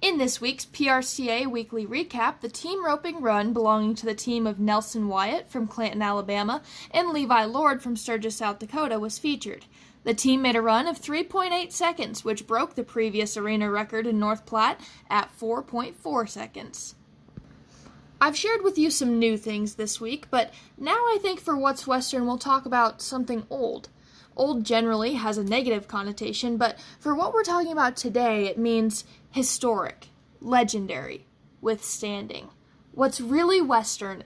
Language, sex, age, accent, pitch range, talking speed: English, female, 10-29, American, 215-265 Hz, 160 wpm